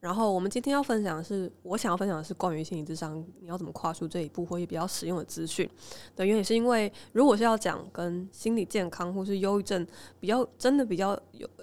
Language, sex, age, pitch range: Chinese, female, 20-39, 175-220 Hz